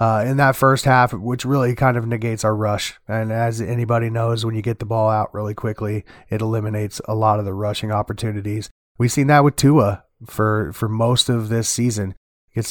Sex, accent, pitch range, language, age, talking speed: male, American, 115-135 Hz, English, 30-49, 210 wpm